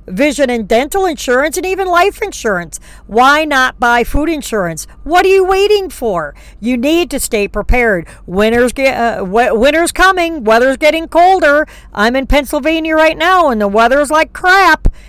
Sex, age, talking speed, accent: female, 50-69, 165 wpm, American